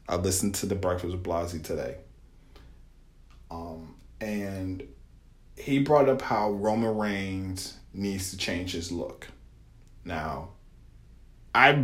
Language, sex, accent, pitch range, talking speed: English, male, American, 95-135 Hz, 115 wpm